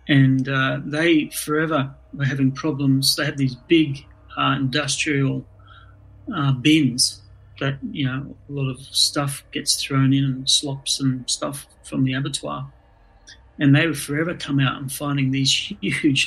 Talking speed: 155 wpm